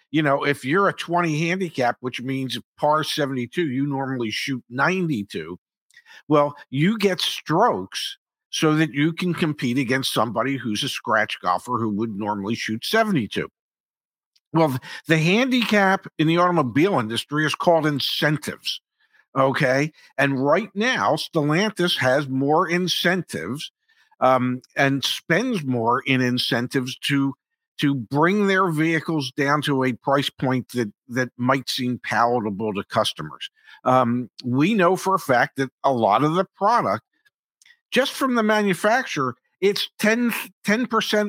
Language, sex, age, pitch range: English, male, 50-69, 135-205 Hz